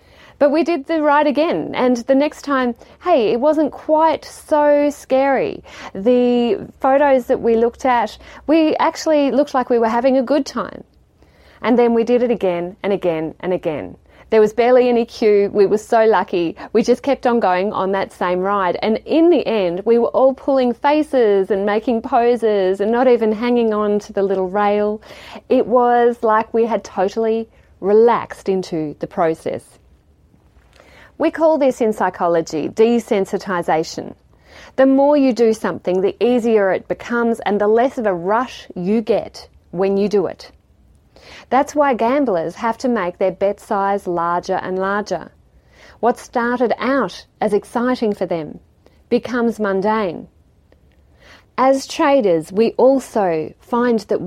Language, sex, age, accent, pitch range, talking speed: English, female, 30-49, Australian, 195-255 Hz, 160 wpm